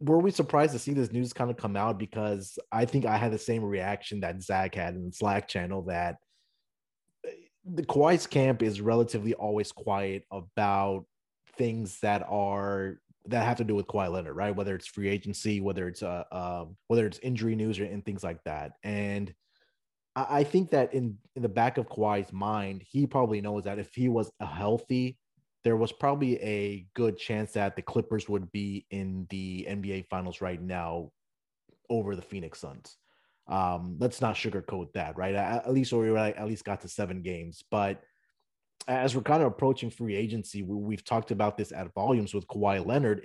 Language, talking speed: English, 195 wpm